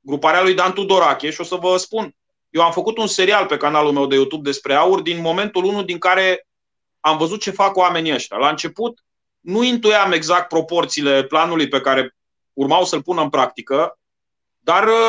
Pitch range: 160-205 Hz